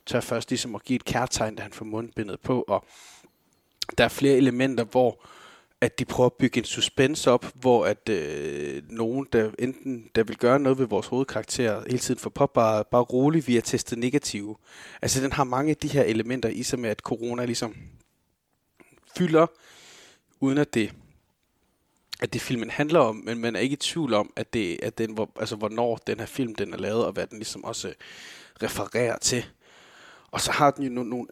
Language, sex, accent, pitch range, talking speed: Danish, male, native, 110-135 Hz, 205 wpm